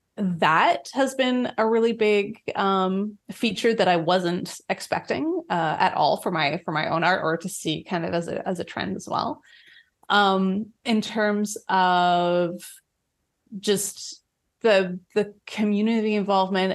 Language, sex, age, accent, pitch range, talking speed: English, female, 20-39, American, 175-220 Hz, 150 wpm